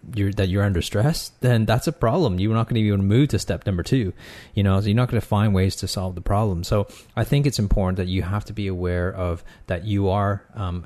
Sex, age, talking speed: male, 30-49, 255 wpm